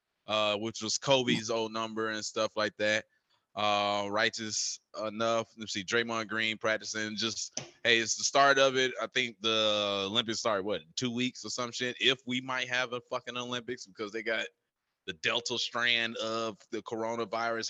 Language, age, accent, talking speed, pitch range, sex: English, 20-39, American, 175 wpm, 105-125 Hz, male